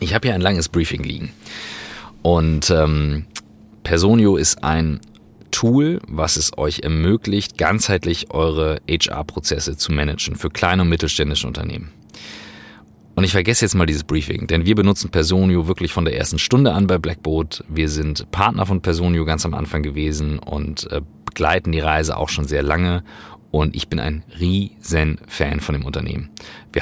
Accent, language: German, German